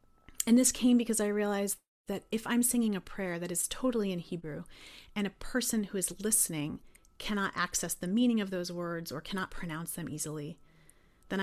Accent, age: American, 30-49